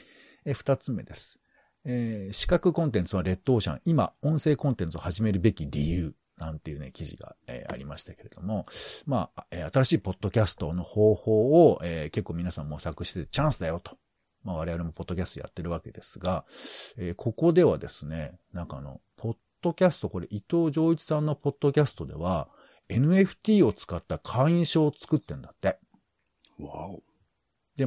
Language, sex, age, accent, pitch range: Japanese, male, 50-69, native, 85-135 Hz